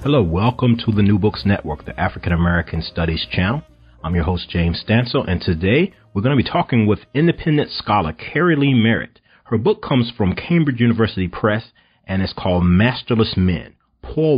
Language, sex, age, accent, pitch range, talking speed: English, male, 40-59, American, 95-120 Hz, 175 wpm